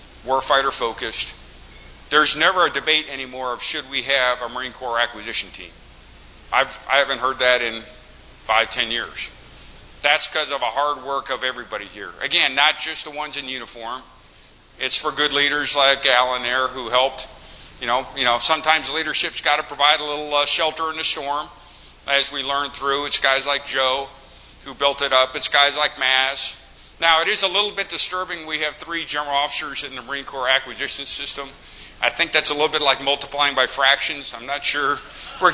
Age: 50-69